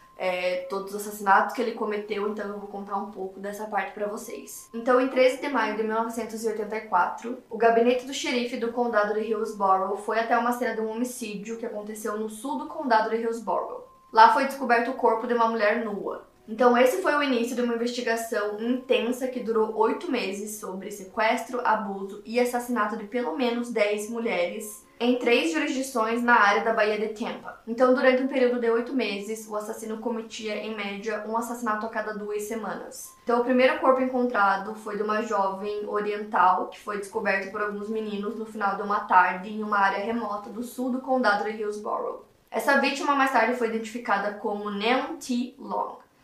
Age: 10-29